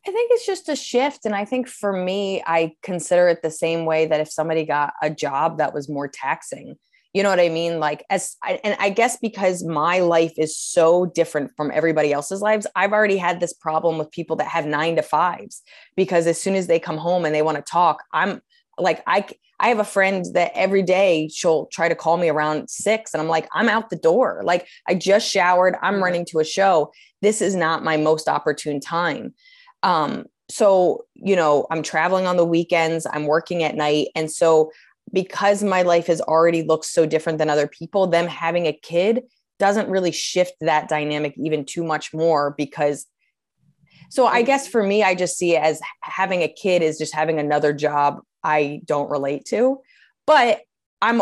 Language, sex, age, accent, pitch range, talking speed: English, female, 20-39, American, 155-190 Hz, 205 wpm